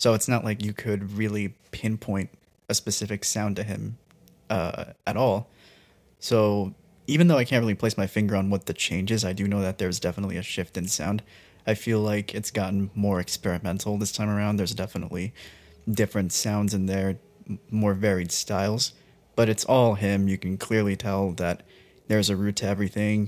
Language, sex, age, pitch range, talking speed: English, male, 20-39, 95-110 Hz, 190 wpm